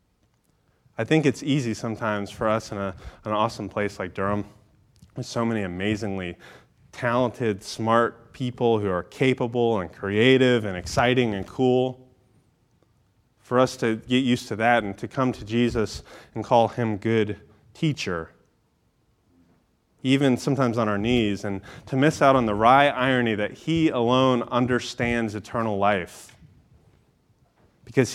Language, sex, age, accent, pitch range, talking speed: English, male, 30-49, American, 105-130 Hz, 140 wpm